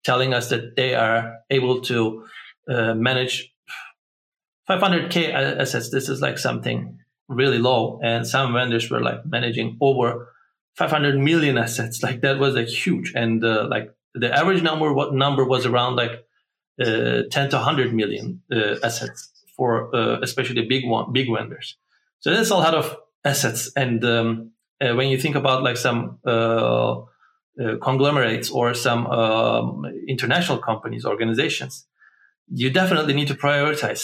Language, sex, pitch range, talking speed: English, male, 115-145 Hz, 155 wpm